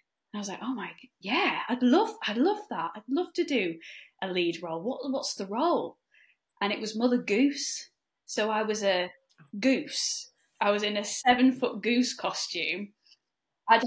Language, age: English, 10-29